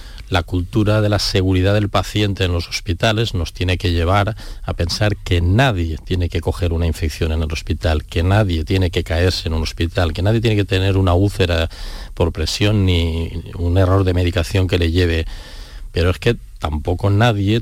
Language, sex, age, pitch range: Spanish, male, 40-59, 85-105 Hz